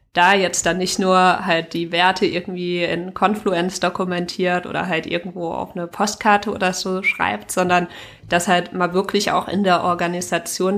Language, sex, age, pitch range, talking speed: German, female, 20-39, 170-190 Hz, 165 wpm